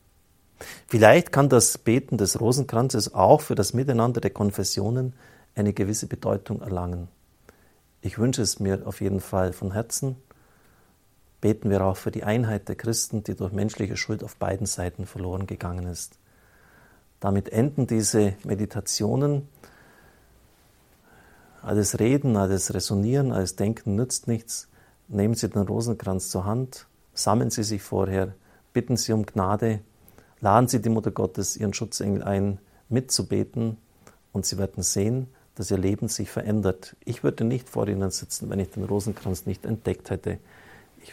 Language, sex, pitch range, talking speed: German, male, 95-115 Hz, 145 wpm